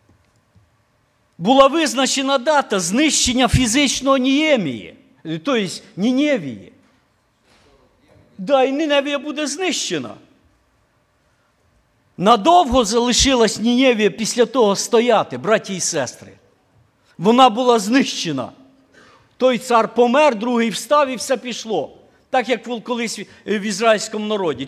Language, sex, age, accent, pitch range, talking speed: Ukrainian, male, 50-69, native, 190-265 Hz, 95 wpm